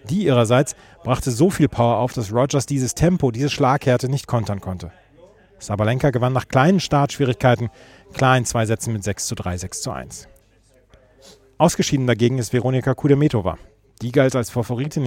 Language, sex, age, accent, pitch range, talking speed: German, male, 40-59, German, 110-135 Hz, 165 wpm